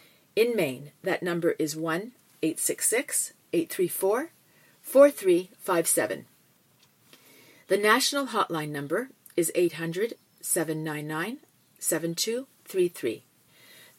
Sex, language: female, English